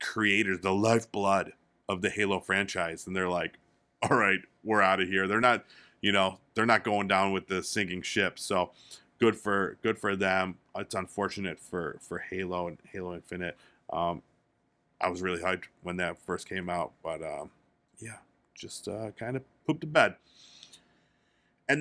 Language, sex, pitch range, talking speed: English, male, 95-130 Hz, 170 wpm